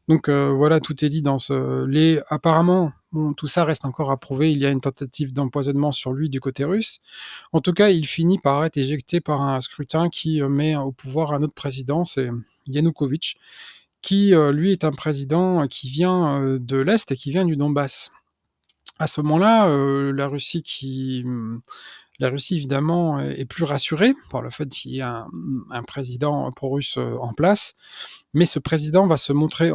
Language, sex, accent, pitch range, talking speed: French, male, French, 135-165 Hz, 190 wpm